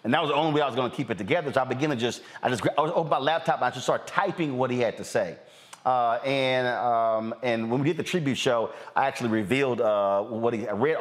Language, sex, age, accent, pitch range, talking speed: English, male, 30-49, American, 110-145 Hz, 285 wpm